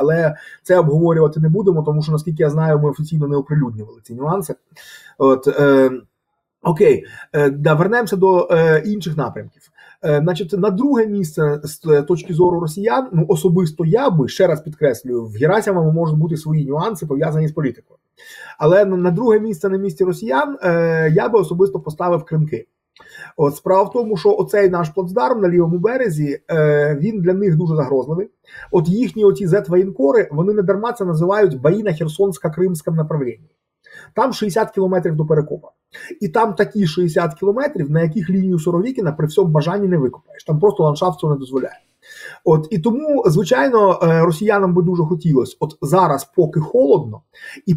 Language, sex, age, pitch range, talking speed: Ukrainian, male, 30-49, 155-195 Hz, 165 wpm